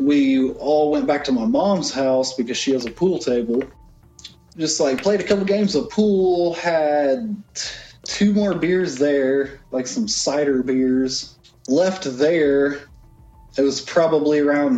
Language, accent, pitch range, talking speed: English, American, 130-170 Hz, 150 wpm